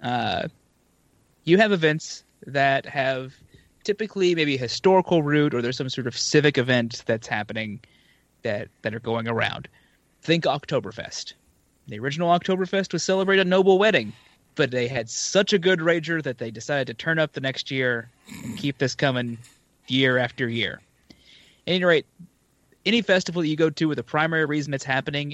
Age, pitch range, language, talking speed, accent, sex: 20-39, 120-165 Hz, English, 170 wpm, American, male